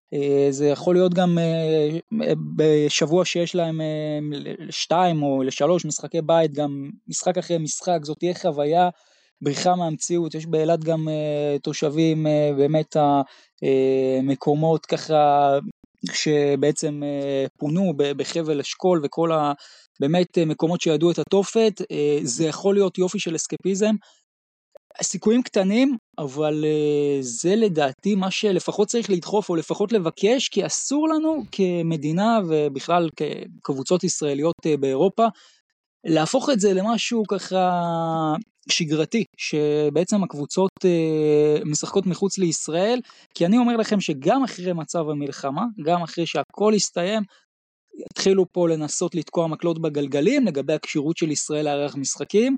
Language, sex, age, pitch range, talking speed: Hebrew, male, 20-39, 150-190 Hz, 125 wpm